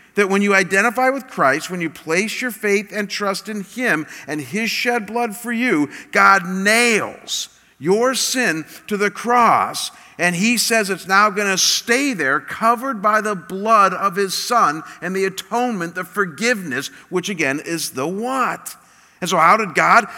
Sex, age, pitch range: male, 50-69, 165-225 Hz